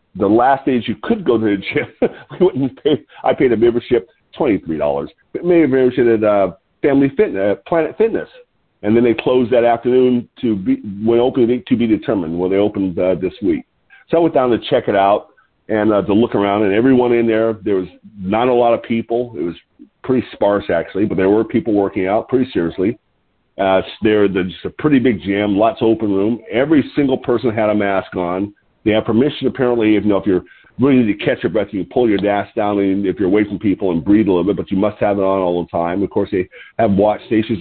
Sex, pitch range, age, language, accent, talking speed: male, 100-130 Hz, 50-69, English, American, 235 wpm